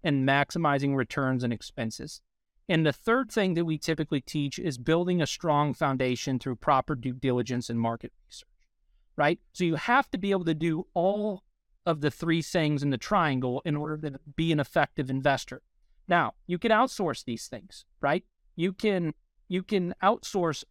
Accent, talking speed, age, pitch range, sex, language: American, 175 wpm, 30-49, 140-185 Hz, male, English